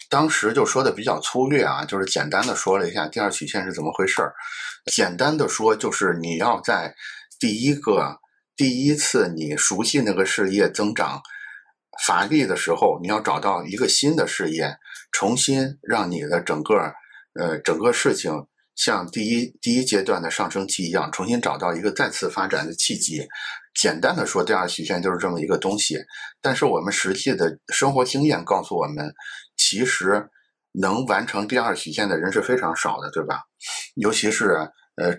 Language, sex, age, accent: Chinese, male, 50-69, native